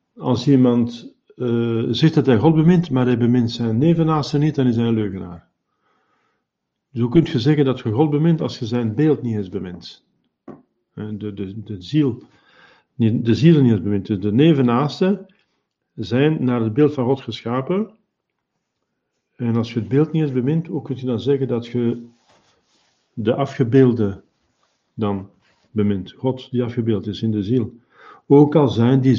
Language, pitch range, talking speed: Dutch, 115-135 Hz, 165 wpm